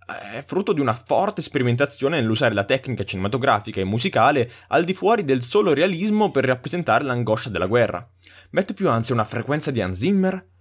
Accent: native